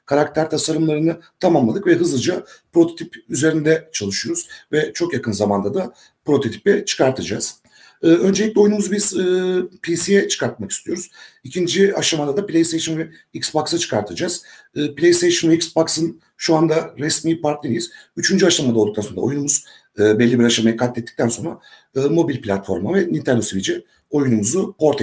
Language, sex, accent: Turkish, male, native